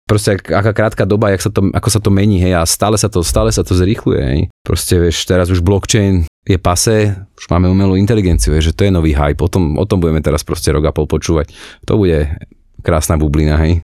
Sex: male